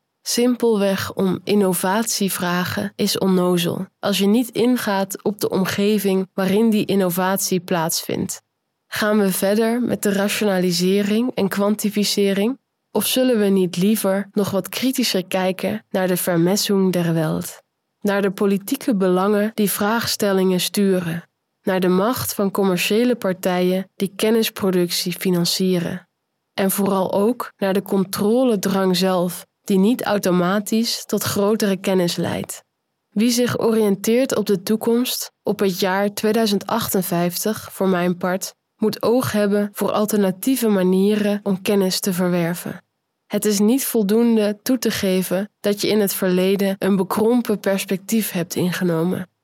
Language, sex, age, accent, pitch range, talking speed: Dutch, female, 20-39, Dutch, 185-215 Hz, 130 wpm